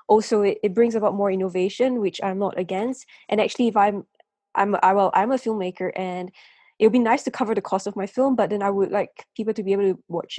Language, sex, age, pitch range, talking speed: English, female, 10-29, 195-240 Hz, 250 wpm